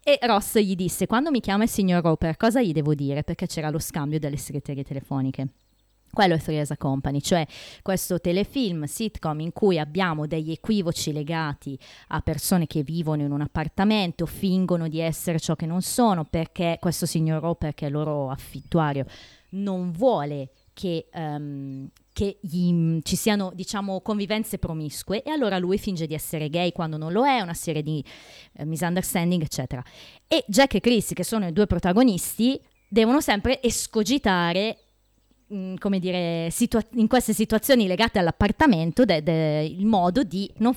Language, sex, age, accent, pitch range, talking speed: Italian, female, 20-39, native, 155-205 Hz, 165 wpm